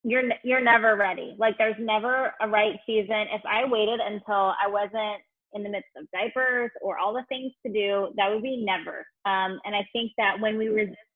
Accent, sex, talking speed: American, female, 210 wpm